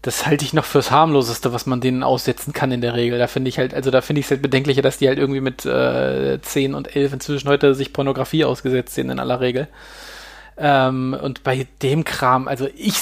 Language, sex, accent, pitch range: German, male, German, 130-150 Hz